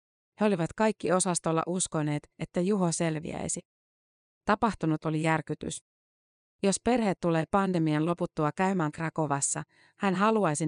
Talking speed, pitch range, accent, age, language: 110 wpm, 155-190 Hz, native, 30-49, Finnish